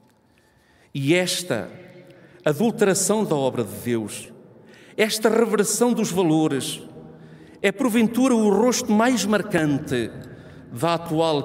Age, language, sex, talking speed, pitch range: 50-69, Portuguese, male, 100 wpm, 125-200 Hz